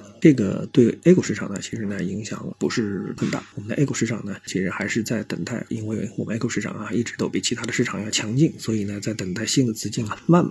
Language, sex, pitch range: Chinese, male, 105-125 Hz